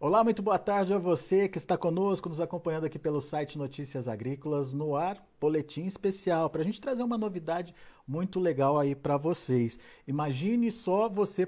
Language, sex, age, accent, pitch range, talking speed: Portuguese, male, 50-69, Brazilian, 140-175 Hz, 180 wpm